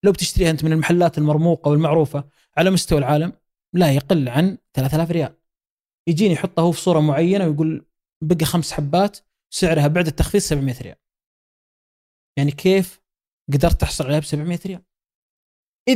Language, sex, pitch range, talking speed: Arabic, male, 150-195 Hz, 145 wpm